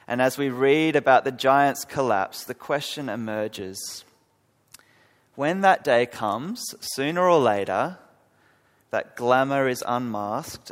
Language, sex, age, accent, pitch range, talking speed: English, male, 30-49, Australian, 115-140 Hz, 125 wpm